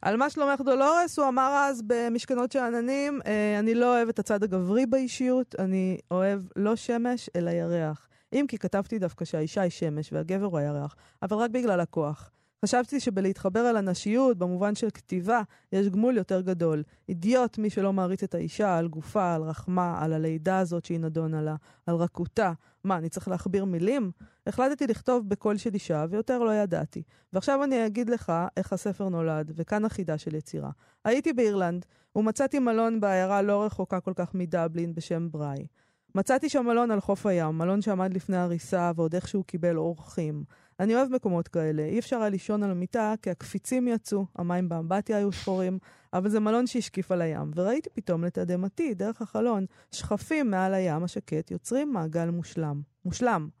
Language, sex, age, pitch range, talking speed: Hebrew, female, 20-39, 170-230 Hz, 160 wpm